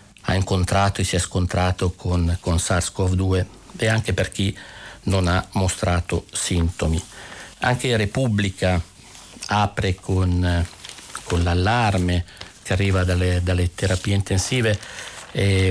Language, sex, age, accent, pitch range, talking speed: Italian, male, 50-69, native, 90-105 Hz, 115 wpm